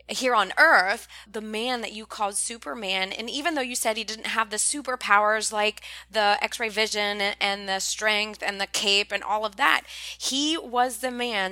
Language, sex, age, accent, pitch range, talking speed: English, female, 20-39, American, 195-240 Hz, 200 wpm